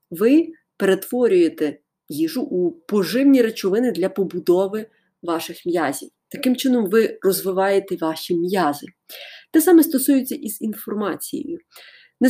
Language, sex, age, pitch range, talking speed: Ukrainian, female, 30-49, 185-285 Hz, 105 wpm